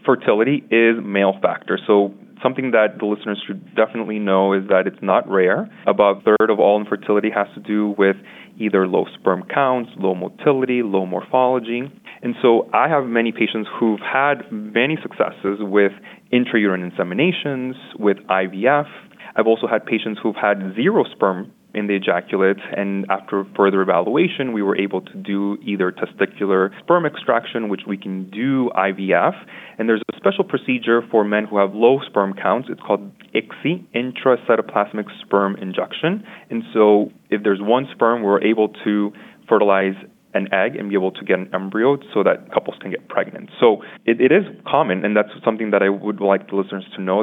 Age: 20-39